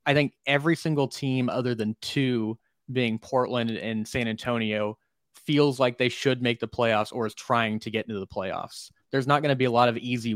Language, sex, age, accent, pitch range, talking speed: English, male, 20-39, American, 110-130 Hz, 215 wpm